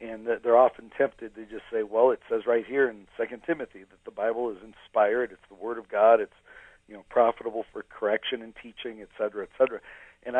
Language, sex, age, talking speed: English, male, 50-69, 220 wpm